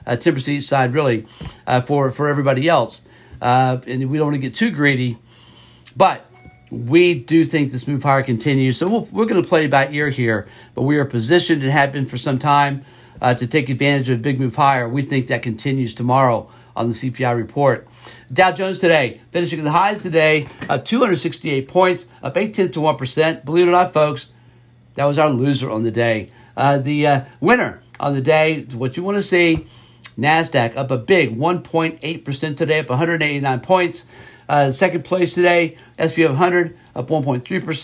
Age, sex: 50-69, male